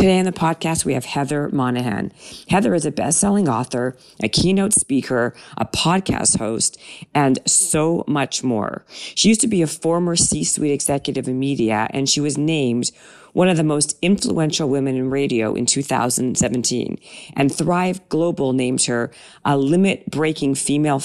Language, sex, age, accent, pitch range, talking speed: English, female, 40-59, American, 130-165 Hz, 155 wpm